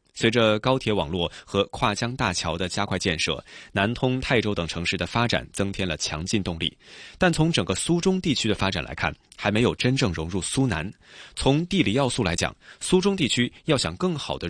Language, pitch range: Chinese, 95-135 Hz